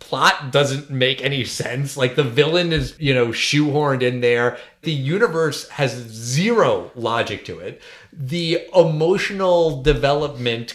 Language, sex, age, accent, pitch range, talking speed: English, male, 30-49, American, 135-170 Hz, 135 wpm